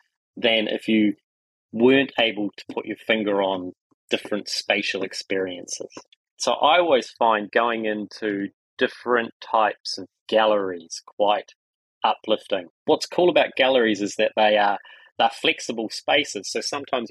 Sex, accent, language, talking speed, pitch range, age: male, Australian, English, 135 wpm, 100-115 Hz, 30-49